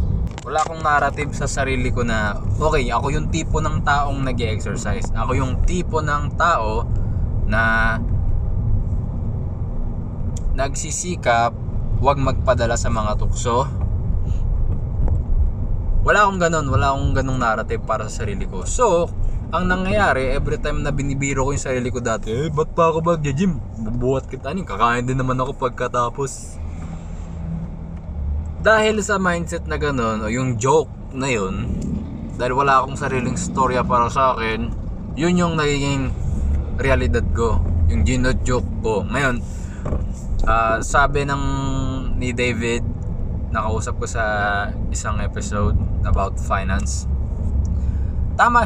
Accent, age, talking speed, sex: native, 20-39, 130 wpm, male